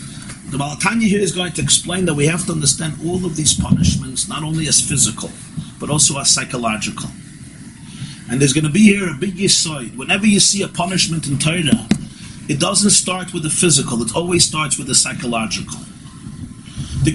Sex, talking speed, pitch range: male, 185 wpm, 155-200 Hz